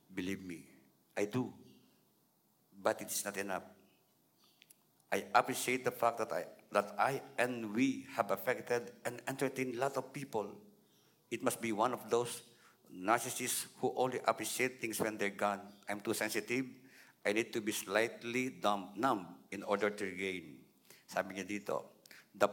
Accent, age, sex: native, 50-69, male